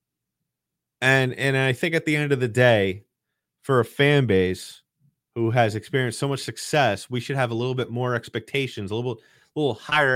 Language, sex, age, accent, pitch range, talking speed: English, male, 30-49, American, 95-130 Hz, 190 wpm